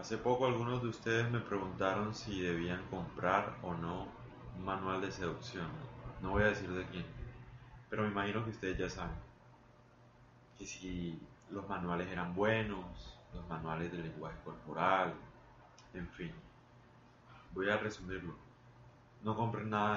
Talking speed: 145 wpm